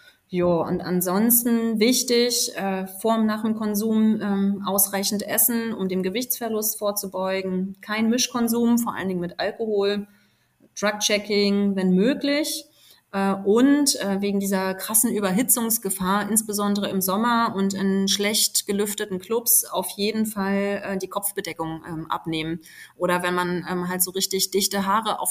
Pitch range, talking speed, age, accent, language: 185-215 Hz, 135 wpm, 30-49, German, German